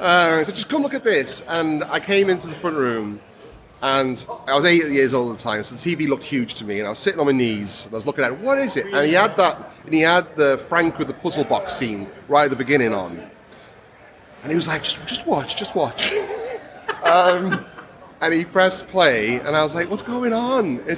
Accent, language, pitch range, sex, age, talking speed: British, English, 145-190 Hz, male, 30-49, 255 wpm